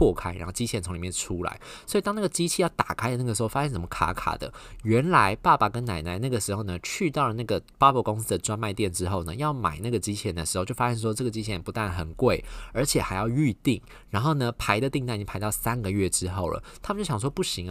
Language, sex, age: Chinese, male, 20-39